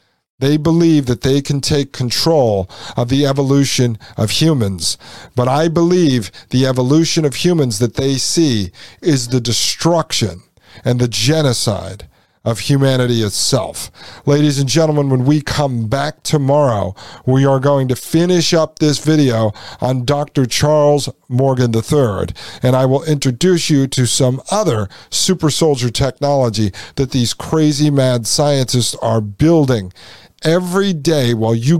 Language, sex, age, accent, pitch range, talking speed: English, male, 50-69, American, 115-150 Hz, 140 wpm